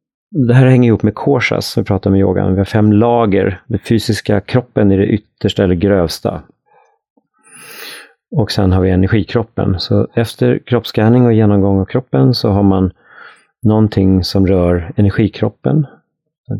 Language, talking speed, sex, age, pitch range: Swedish, 160 wpm, male, 40-59, 95-120 Hz